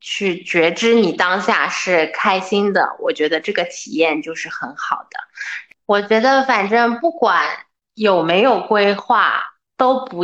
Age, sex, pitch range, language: 20-39, female, 180-245 Hz, Chinese